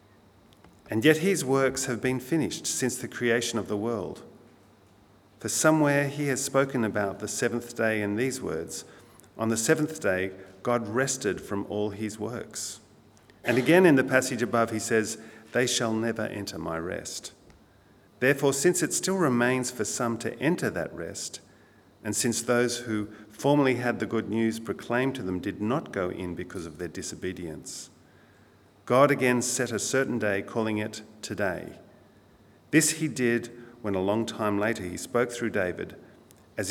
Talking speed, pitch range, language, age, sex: 165 wpm, 100-125 Hz, English, 50-69, male